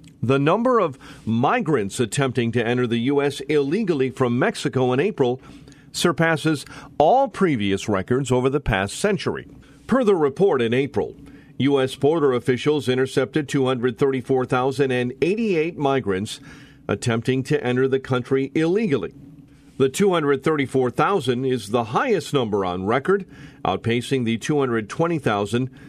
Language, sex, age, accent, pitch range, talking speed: English, male, 50-69, American, 120-145 Hz, 115 wpm